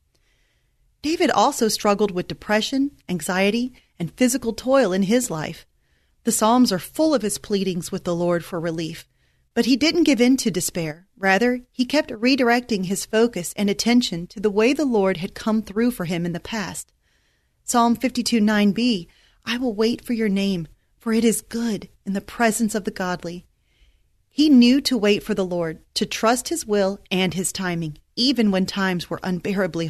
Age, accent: 30-49, American